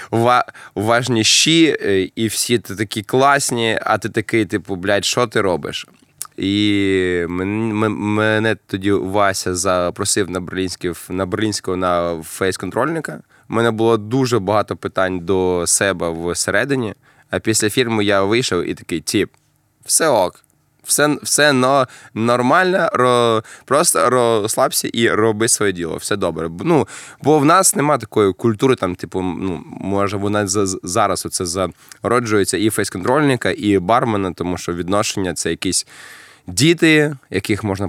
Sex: male